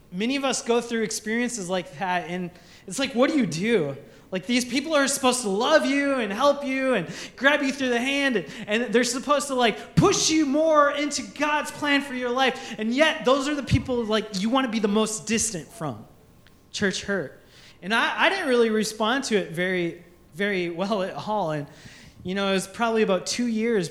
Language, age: English, 20-39